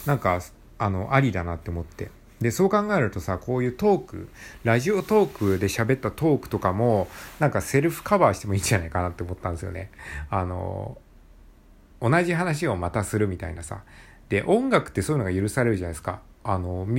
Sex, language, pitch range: male, Japanese, 90-125 Hz